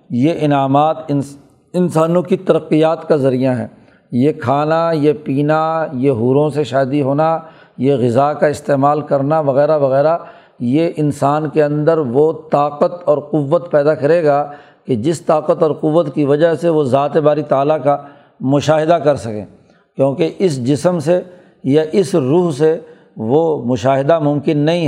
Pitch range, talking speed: 140-165 Hz, 150 wpm